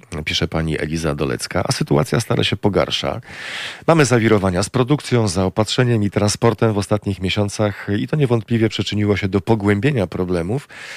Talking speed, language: 150 wpm, Polish